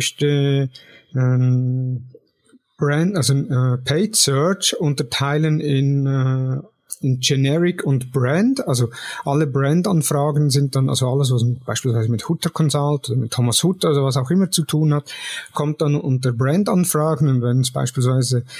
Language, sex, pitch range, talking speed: German, male, 135-160 Hz, 130 wpm